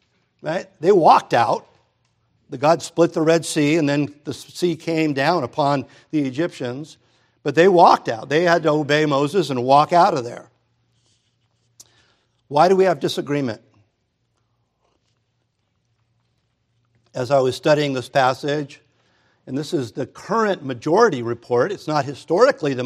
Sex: male